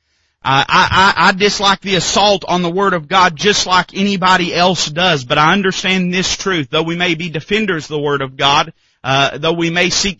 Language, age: English, 40-59